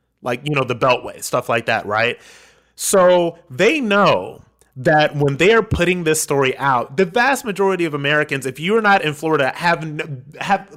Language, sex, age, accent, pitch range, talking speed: English, male, 30-49, American, 130-170 Hz, 185 wpm